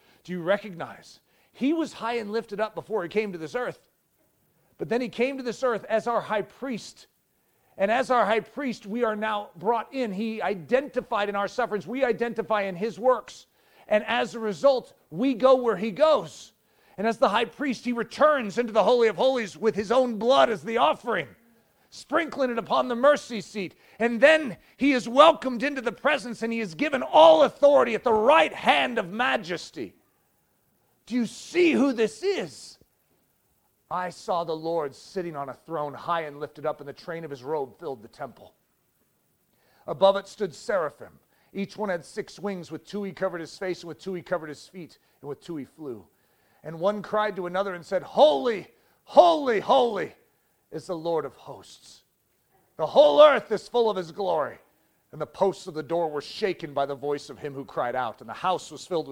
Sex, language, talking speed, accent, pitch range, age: male, English, 200 wpm, American, 180-250 Hz, 40-59